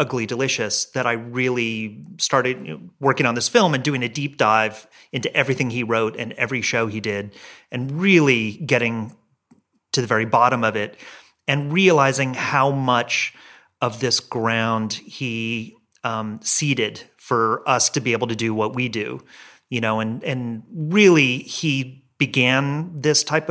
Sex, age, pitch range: male, 30-49, 115-145 Hz